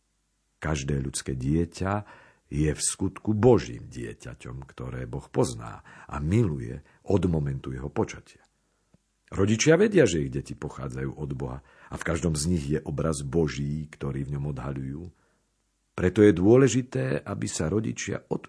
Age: 50-69